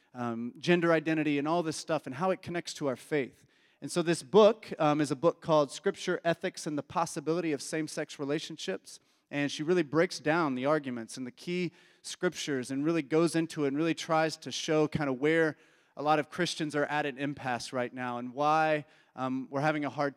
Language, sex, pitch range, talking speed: English, male, 135-165 Hz, 215 wpm